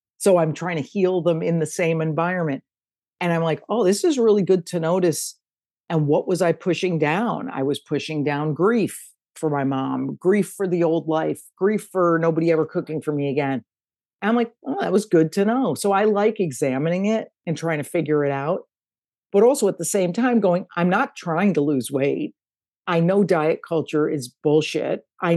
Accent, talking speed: American, 205 wpm